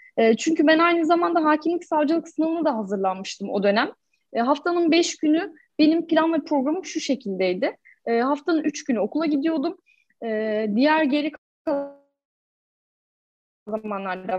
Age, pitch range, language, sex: 10-29, 270-335 Hz, Turkish, female